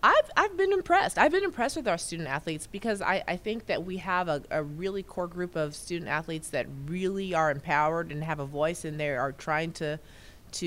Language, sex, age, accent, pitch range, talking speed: English, female, 30-49, American, 140-170 Hz, 225 wpm